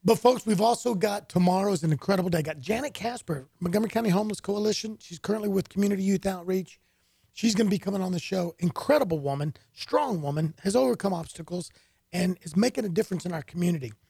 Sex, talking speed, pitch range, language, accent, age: male, 200 wpm, 155-210 Hz, English, American, 40-59